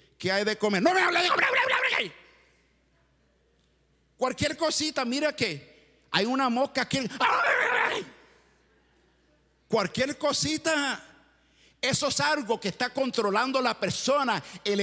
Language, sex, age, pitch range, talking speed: English, male, 50-69, 200-255 Hz, 95 wpm